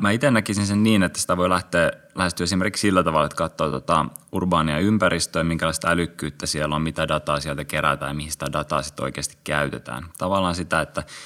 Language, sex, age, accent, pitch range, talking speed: Finnish, male, 20-39, native, 80-95 Hz, 185 wpm